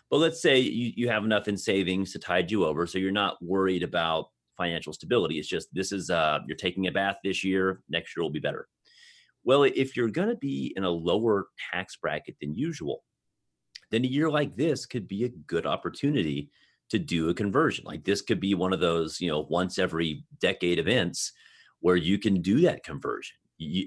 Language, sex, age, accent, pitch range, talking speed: English, male, 30-49, American, 85-105 Hz, 205 wpm